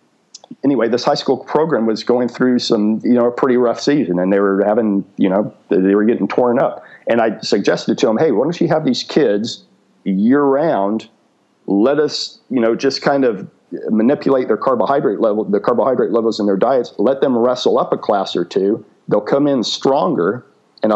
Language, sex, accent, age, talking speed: English, male, American, 50-69, 200 wpm